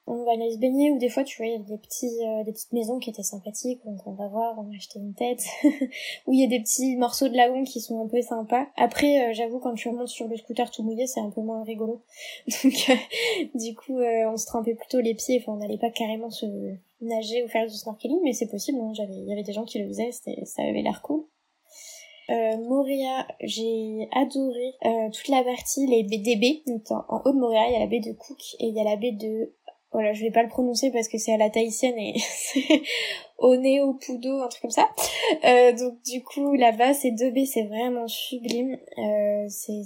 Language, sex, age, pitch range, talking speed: French, female, 10-29, 220-260 Hz, 250 wpm